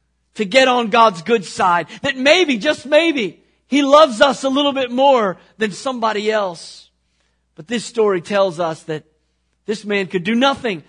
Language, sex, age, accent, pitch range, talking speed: English, male, 40-59, American, 175-265 Hz, 170 wpm